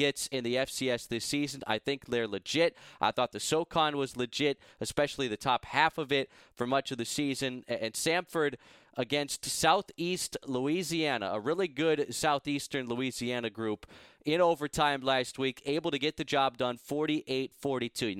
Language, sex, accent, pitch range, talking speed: English, male, American, 130-160 Hz, 160 wpm